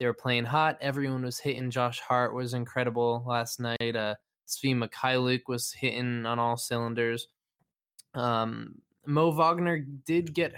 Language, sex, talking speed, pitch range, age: English, male, 145 wpm, 115-130 Hz, 20-39